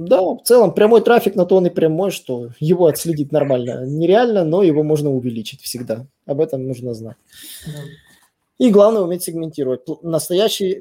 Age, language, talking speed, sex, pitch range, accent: 20-39, Russian, 160 wpm, male, 125-165 Hz, native